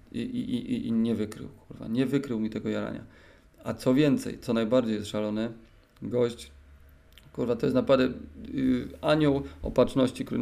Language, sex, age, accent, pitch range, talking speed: Polish, male, 30-49, native, 115-130 Hz, 155 wpm